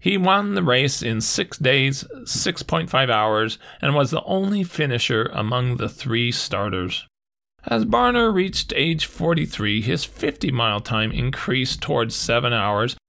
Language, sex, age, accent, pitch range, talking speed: English, male, 40-59, American, 110-150 Hz, 140 wpm